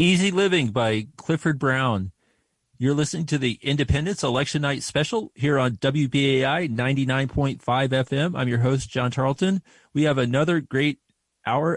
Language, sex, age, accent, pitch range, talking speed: English, male, 30-49, American, 110-130 Hz, 145 wpm